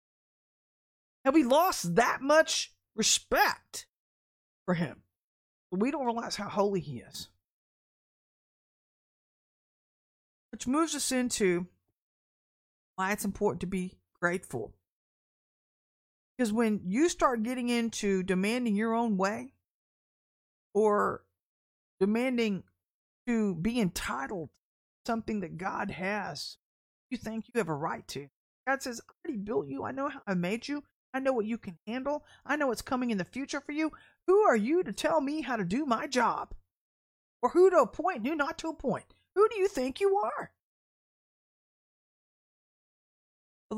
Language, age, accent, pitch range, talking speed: English, 40-59, American, 185-270 Hz, 145 wpm